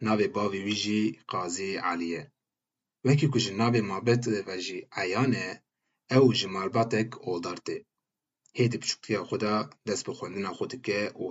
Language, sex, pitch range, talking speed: Turkish, male, 100-120 Hz, 125 wpm